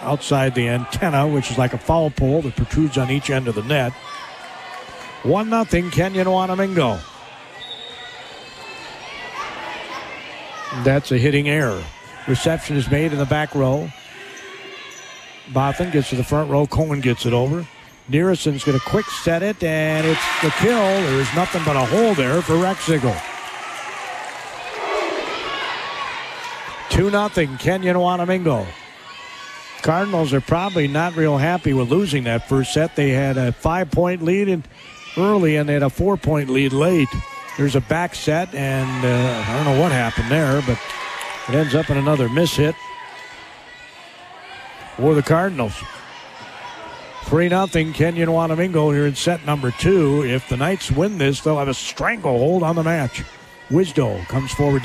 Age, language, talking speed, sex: 50-69, English, 145 wpm, male